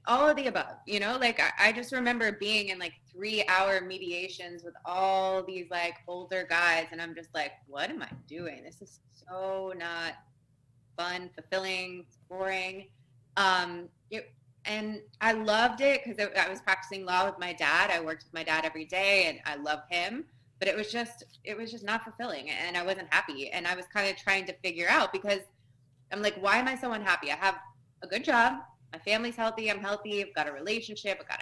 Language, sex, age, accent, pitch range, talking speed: English, female, 20-39, American, 160-200 Hz, 205 wpm